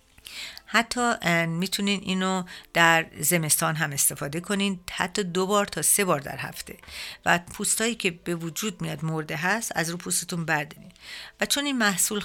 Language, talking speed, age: Persian, 155 wpm, 50-69